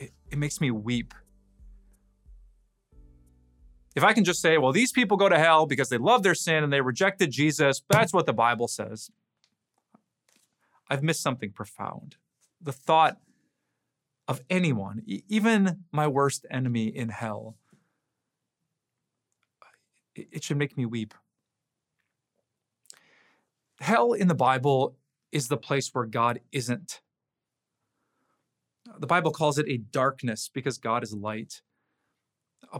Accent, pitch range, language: American, 120-155 Hz, English